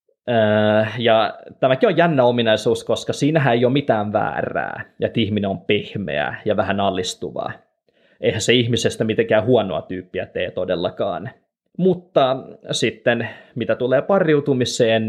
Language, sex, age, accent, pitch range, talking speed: Finnish, male, 20-39, native, 110-150 Hz, 125 wpm